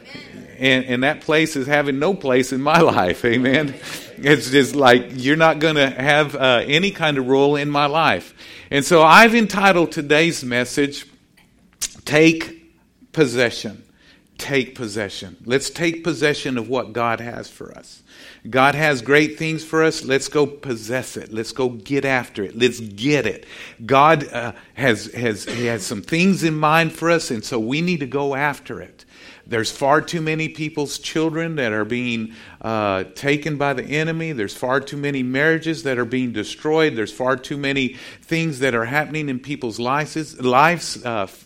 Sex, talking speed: male, 170 wpm